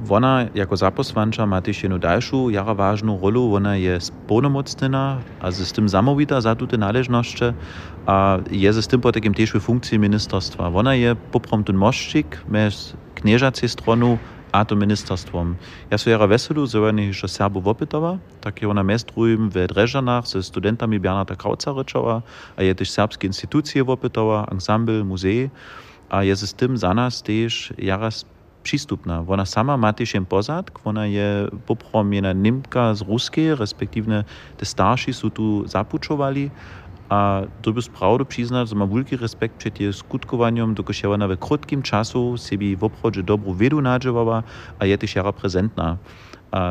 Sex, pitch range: male, 100-120 Hz